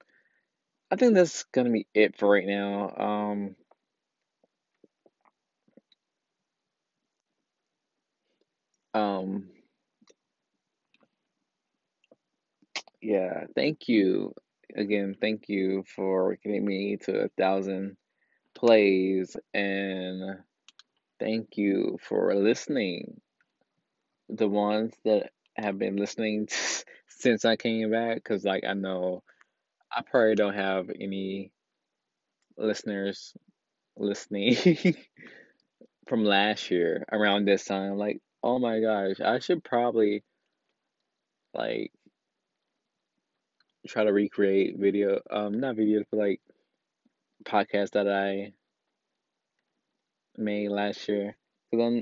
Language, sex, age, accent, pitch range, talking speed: English, male, 20-39, American, 100-110 Hz, 95 wpm